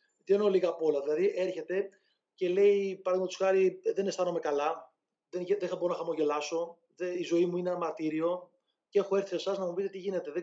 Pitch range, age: 175-210 Hz, 30-49